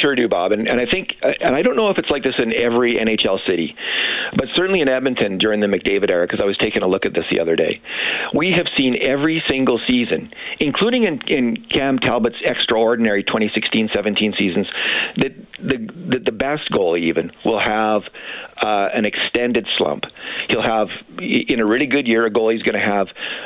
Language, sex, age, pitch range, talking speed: English, male, 50-69, 110-135 Hz, 195 wpm